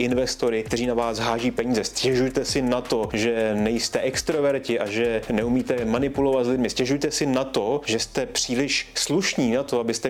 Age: 30-49